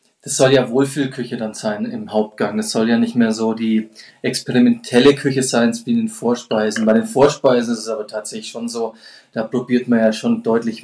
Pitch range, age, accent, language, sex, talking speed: 115-145 Hz, 20-39, German, German, male, 200 wpm